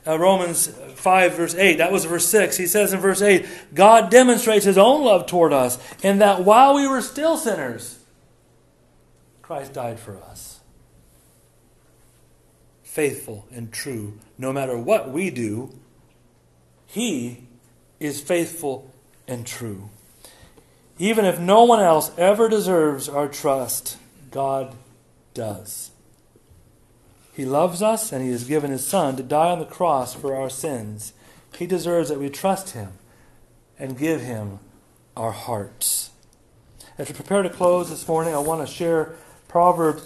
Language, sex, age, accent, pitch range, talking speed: English, male, 40-59, American, 125-180 Hz, 145 wpm